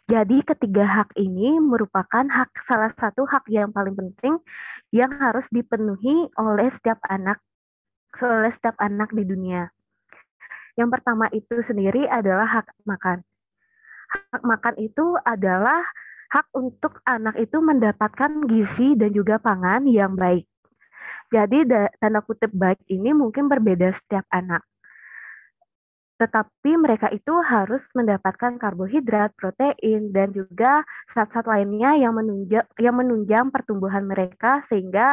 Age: 20-39